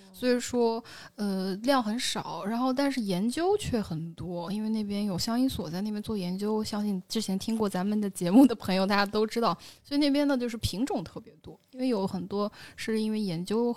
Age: 20-39